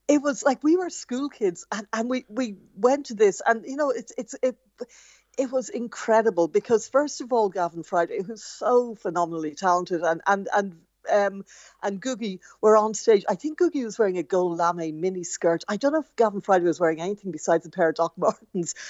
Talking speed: 215 wpm